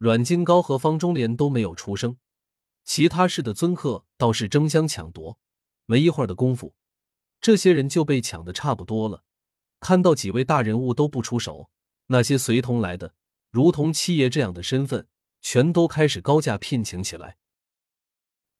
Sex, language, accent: male, Chinese, native